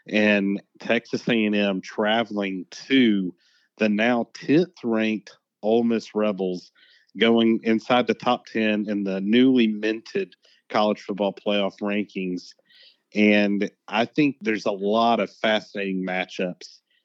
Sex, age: male, 40-59